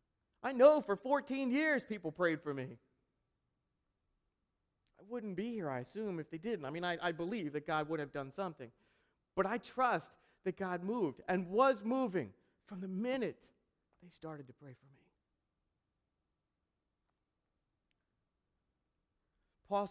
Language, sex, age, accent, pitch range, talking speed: English, male, 40-59, American, 160-225 Hz, 145 wpm